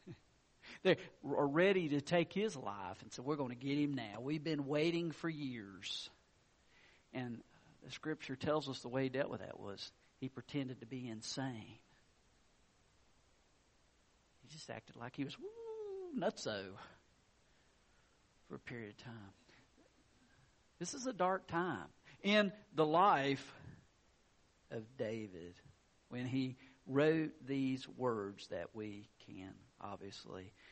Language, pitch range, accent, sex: English, 100-140 Hz, American, male